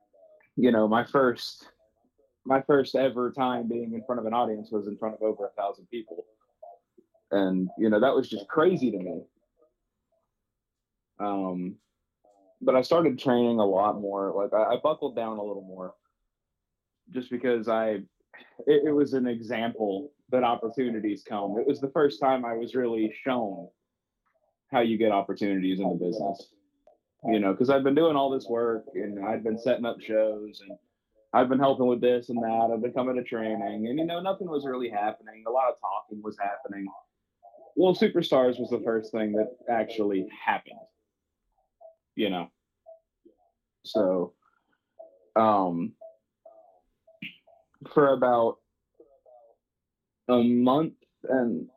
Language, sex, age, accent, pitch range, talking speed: English, male, 30-49, American, 105-135 Hz, 155 wpm